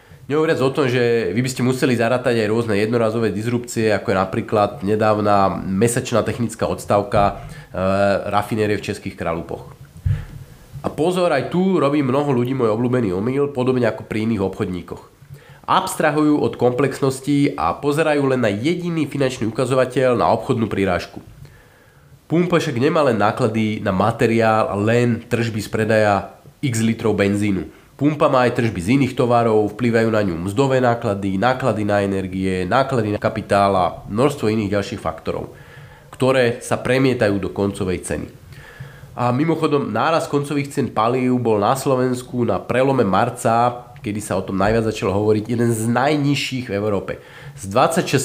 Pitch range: 105-135 Hz